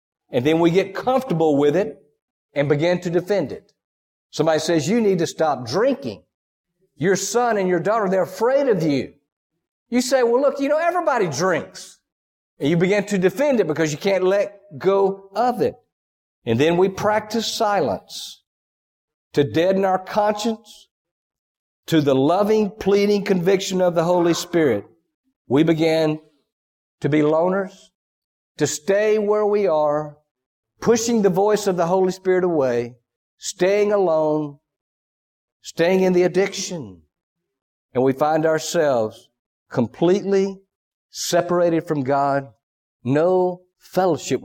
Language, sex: English, male